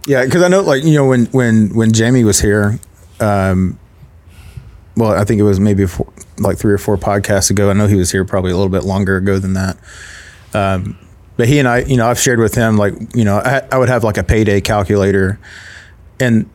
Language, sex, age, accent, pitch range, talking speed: English, male, 30-49, American, 95-115 Hz, 230 wpm